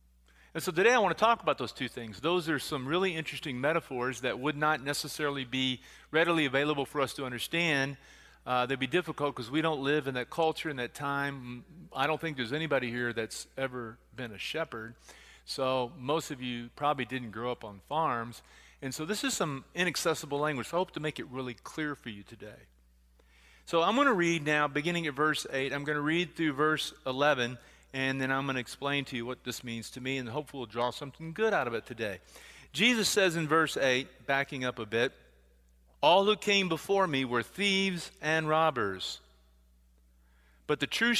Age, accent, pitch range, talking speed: 40-59, American, 115-160 Hz, 205 wpm